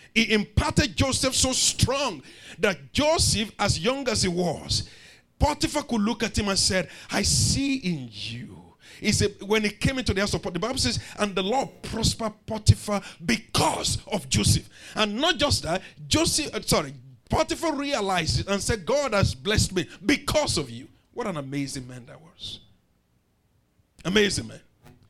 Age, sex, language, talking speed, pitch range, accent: 50-69, male, English, 165 wpm, 120-190 Hz, Nigerian